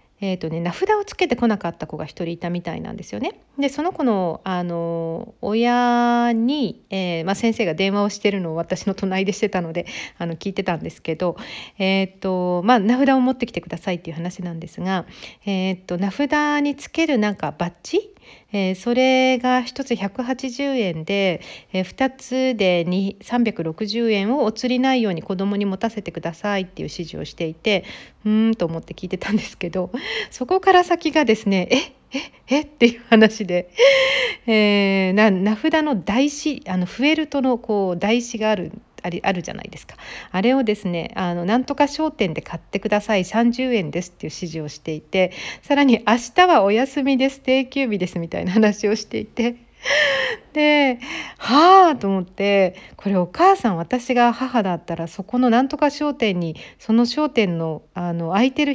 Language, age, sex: Japanese, 40-59, female